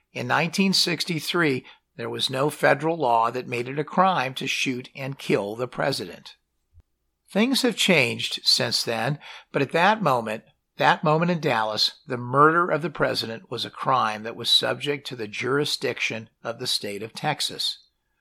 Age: 50-69